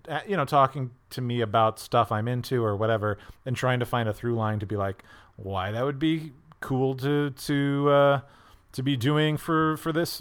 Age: 30-49